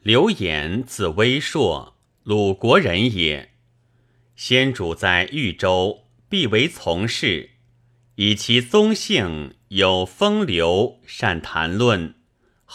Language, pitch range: Chinese, 90-125 Hz